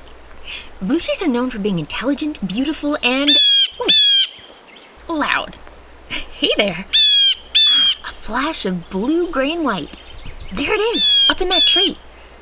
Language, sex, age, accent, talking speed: English, female, 20-39, American, 135 wpm